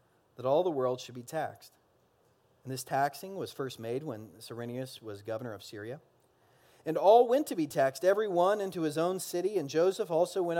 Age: 40-59